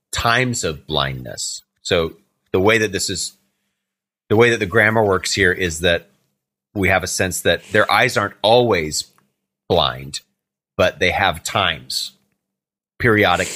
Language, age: English, 30-49